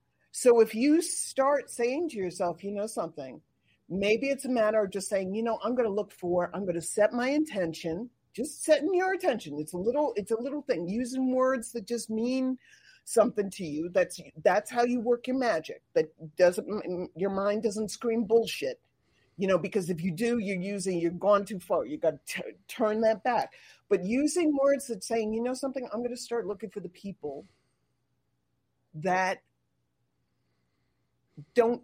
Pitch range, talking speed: 180-245 Hz, 190 wpm